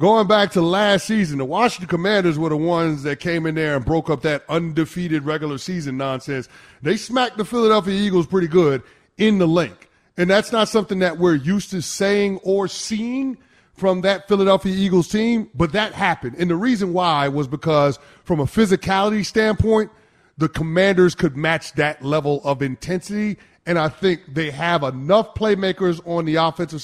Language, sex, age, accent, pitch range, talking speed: English, male, 30-49, American, 155-195 Hz, 180 wpm